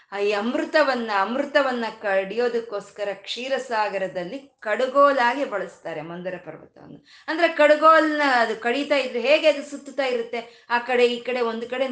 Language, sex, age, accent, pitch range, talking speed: Kannada, female, 20-39, native, 200-270 Hz, 125 wpm